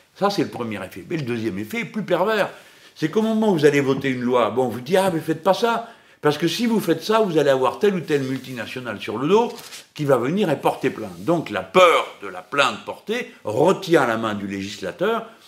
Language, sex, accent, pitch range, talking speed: French, male, French, 105-165 Hz, 260 wpm